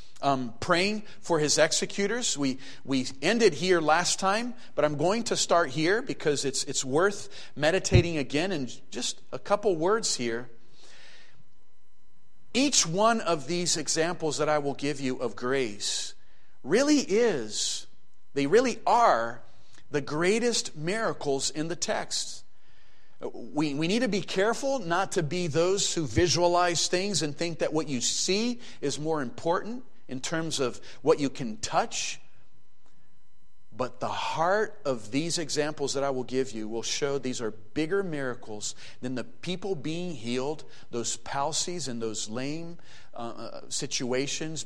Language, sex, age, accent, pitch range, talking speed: English, male, 40-59, American, 130-180 Hz, 150 wpm